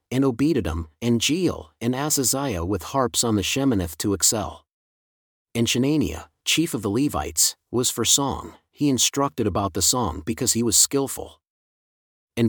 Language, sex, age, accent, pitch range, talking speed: English, male, 40-59, American, 100-130 Hz, 155 wpm